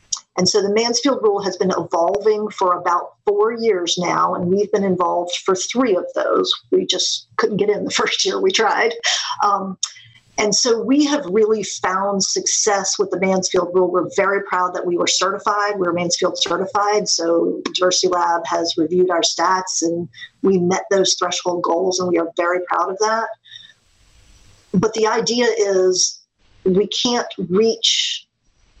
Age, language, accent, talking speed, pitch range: 50-69, English, American, 165 wpm, 175-210 Hz